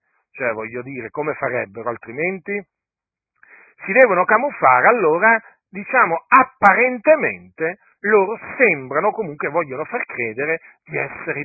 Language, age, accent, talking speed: Italian, 50-69, native, 105 wpm